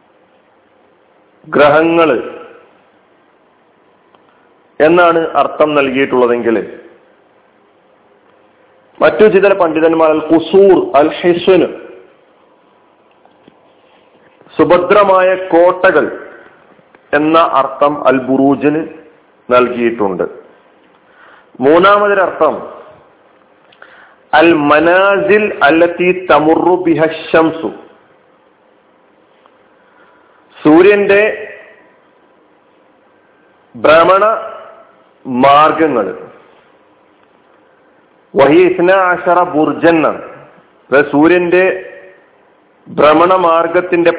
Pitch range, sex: 150-190 Hz, male